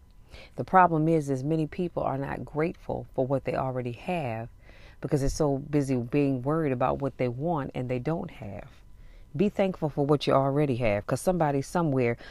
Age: 40-59